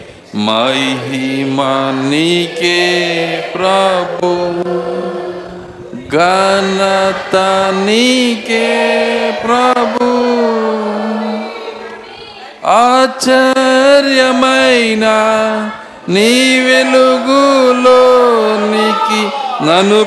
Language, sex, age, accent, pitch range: Telugu, male, 50-69, native, 195-245 Hz